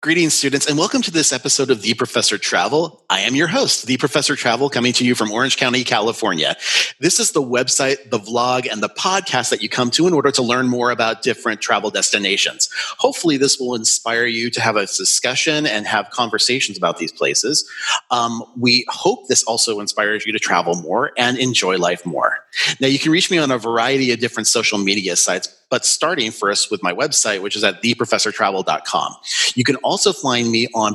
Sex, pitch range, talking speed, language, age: male, 115-150 Hz, 205 wpm, English, 30-49